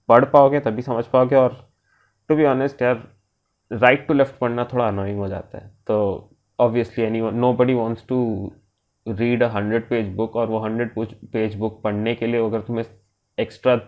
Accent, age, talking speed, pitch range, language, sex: native, 20-39, 180 wpm, 105-125 Hz, Hindi, male